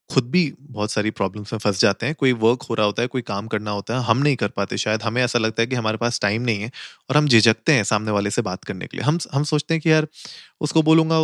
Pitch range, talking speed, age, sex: 115-150 Hz, 290 wpm, 20-39, male